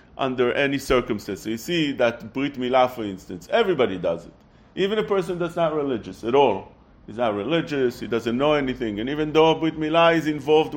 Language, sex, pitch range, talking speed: English, male, 120-160 Hz, 195 wpm